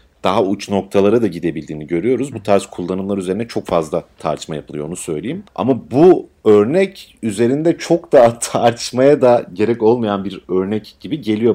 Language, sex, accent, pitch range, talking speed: Turkish, male, native, 90-125 Hz, 155 wpm